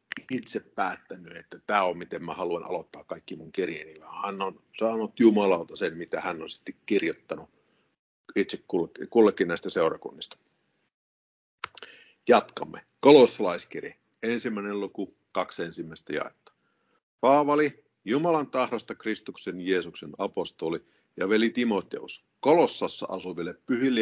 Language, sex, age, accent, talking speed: Finnish, male, 50-69, native, 110 wpm